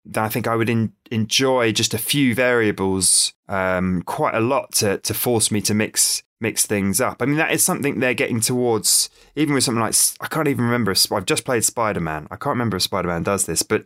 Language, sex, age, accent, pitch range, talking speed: English, male, 20-39, British, 95-120 Hz, 220 wpm